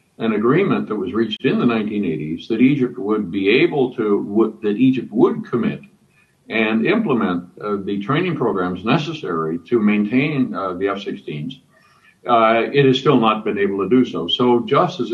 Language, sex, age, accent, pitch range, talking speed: English, male, 60-79, American, 105-130 Hz, 165 wpm